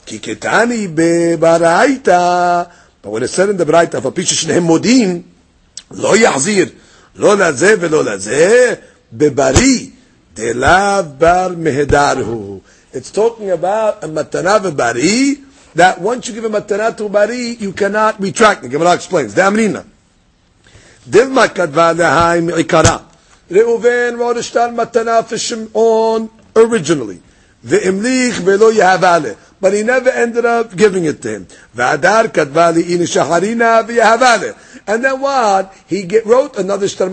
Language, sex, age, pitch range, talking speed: English, male, 50-69, 165-225 Hz, 80 wpm